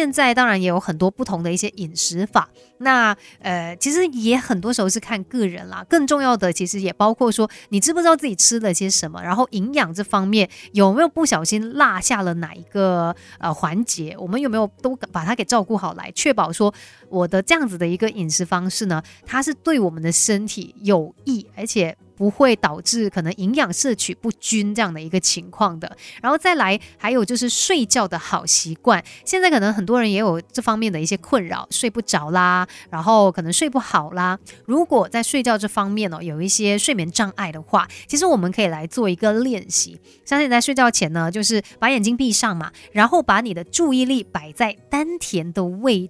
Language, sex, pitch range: Chinese, female, 185-245 Hz